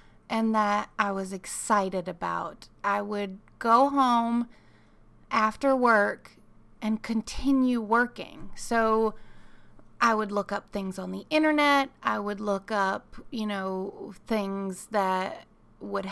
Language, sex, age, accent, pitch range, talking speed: English, female, 30-49, American, 200-245 Hz, 125 wpm